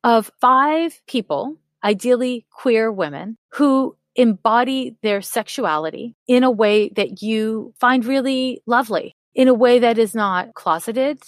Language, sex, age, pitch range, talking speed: English, female, 30-49, 195-250 Hz, 135 wpm